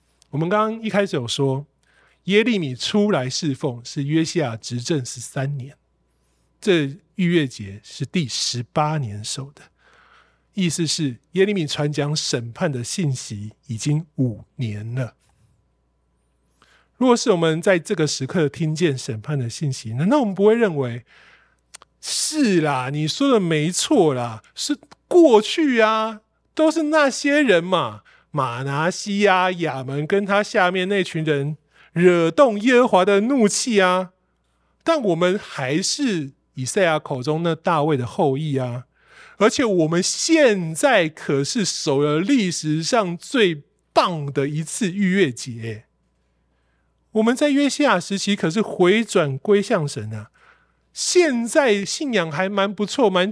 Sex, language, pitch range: male, Chinese, 135-200 Hz